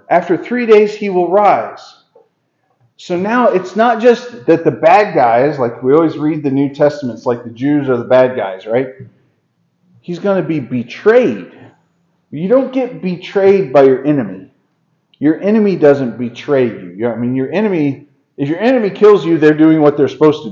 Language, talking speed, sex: English, 180 wpm, male